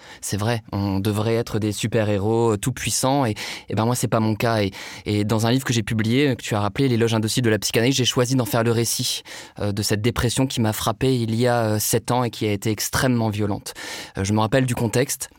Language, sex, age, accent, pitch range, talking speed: French, male, 20-39, French, 105-120 Hz, 240 wpm